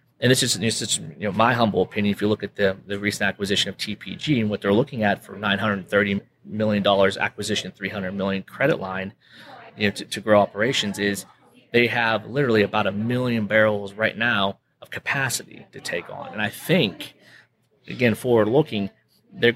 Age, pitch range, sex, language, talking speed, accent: 30-49, 100-115 Hz, male, English, 210 wpm, American